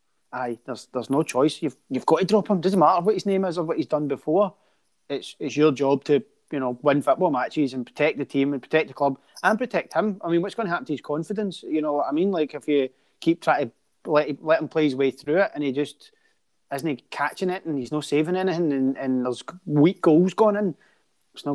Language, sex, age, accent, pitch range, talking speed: English, male, 30-49, British, 135-165 Hz, 255 wpm